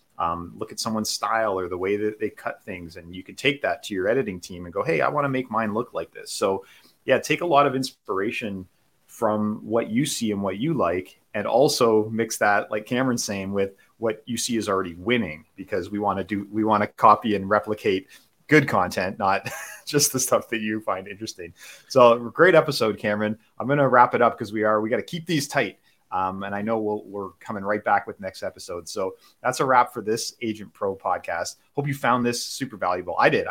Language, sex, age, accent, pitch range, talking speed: English, male, 30-49, American, 100-125 Hz, 230 wpm